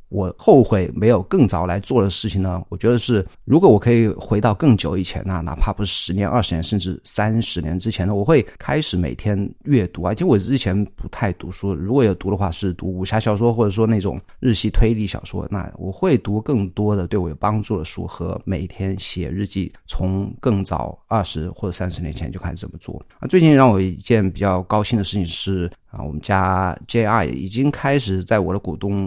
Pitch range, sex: 90-115 Hz, male